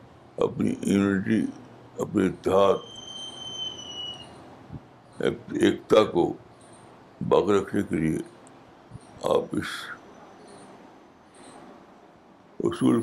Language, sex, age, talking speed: Urdu, male, 60-79, 60 wpm